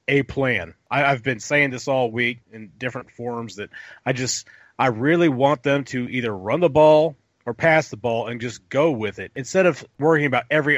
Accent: American